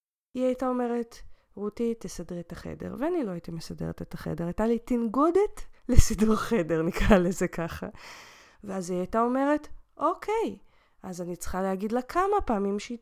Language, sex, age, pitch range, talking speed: Hebrew, female, 20-39, 185-255 Hz, 155 wpm